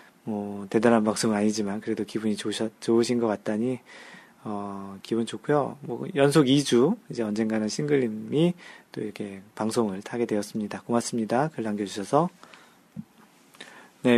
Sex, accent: male, native